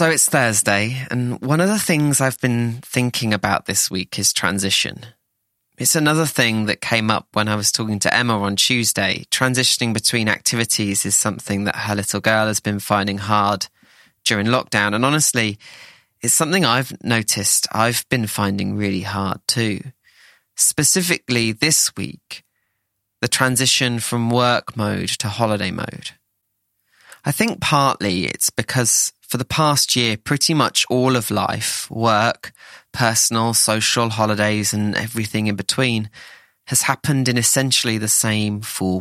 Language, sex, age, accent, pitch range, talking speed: English, male, 20-39, British, 105-125 Hz, 150 wpm